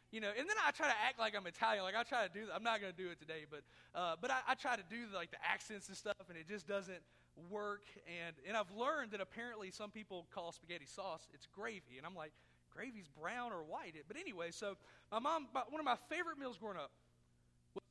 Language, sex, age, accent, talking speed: English, male, 40-59, American, 255 wpm